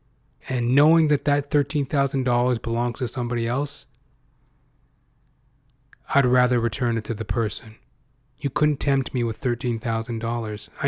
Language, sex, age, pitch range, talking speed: English, male, 30-49, 125-140 Hz, 120 wpm